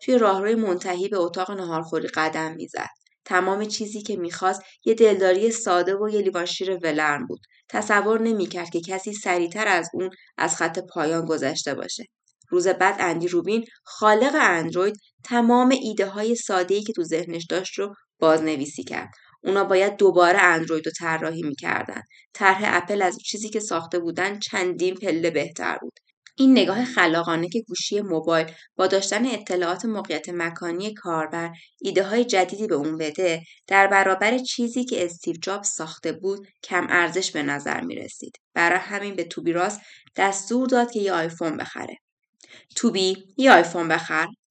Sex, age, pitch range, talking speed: female, 20-39, 170-210 Hz, 155 wpm